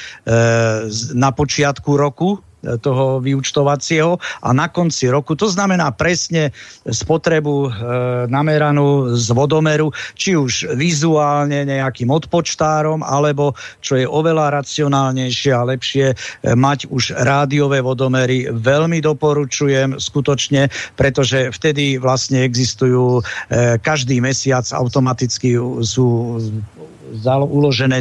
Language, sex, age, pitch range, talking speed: Slovak, male, 50-69, 130-155 Hz, 95 wpm